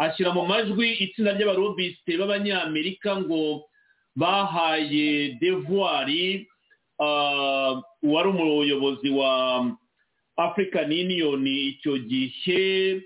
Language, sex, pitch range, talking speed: English, male, 155-220 Hz, 85 wpm